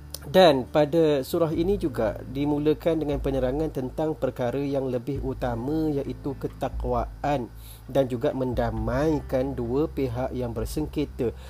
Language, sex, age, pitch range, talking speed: Malay, male, 40-59, 110-135 Hz, 115 wpm